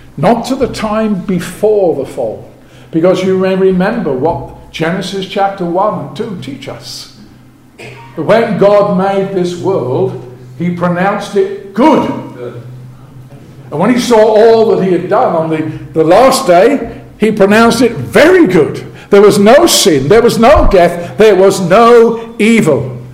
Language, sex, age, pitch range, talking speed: English, male, 50-69, 150-210 Hz, 155 wpm